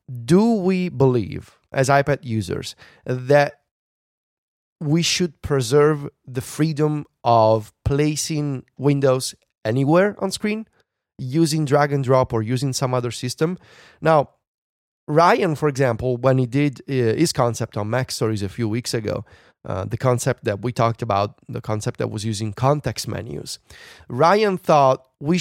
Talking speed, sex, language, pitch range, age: 140 wpm, male, English, 115-155 Hz, 30-49